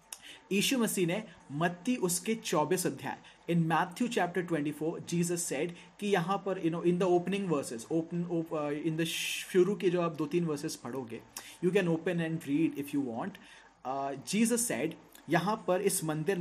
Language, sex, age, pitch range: Hindi, male, 30-49, 155-195 Hz